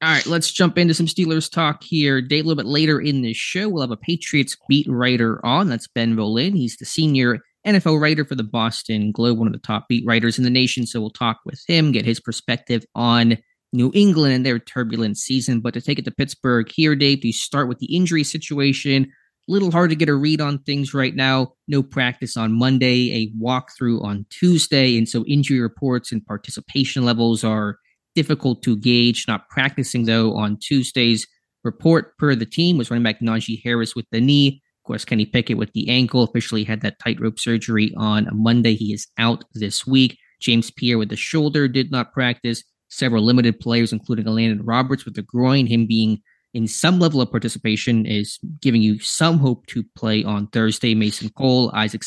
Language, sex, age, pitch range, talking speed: English, male, 20-39, 115-140 Hz, 205 wpm